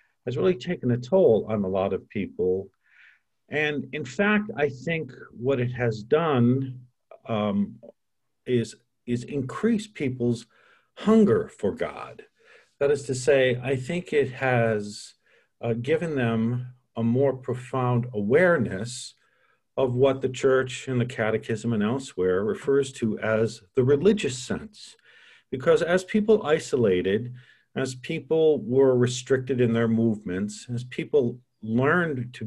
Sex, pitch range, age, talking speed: male, 115-145 Hz, 50-69, 135 wpm